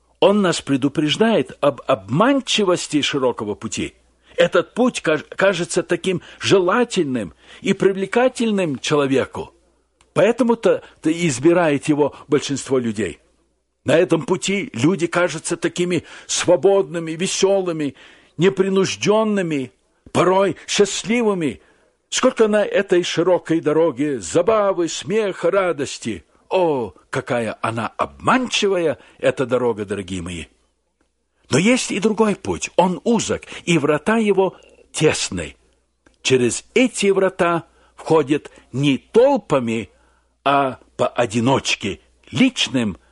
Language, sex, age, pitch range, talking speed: Russian, male, 60-79, 140-195 Hz, 95 wpm